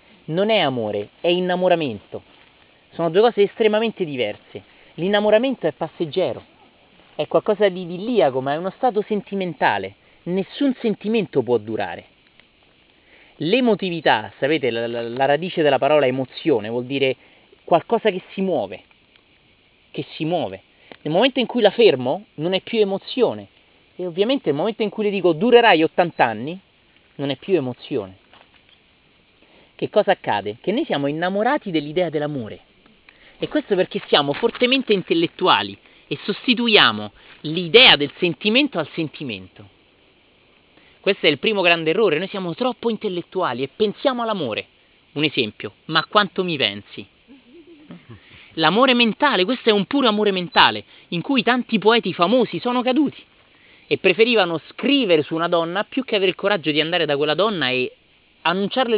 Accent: native